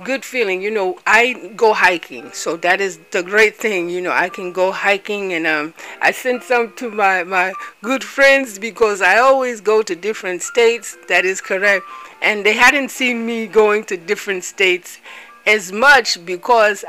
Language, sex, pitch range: English, female, 195-245 Hz